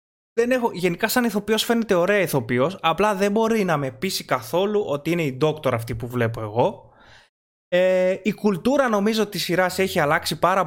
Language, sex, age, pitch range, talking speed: Greek, male, 20-39, 130-200 Hz, 180 wpm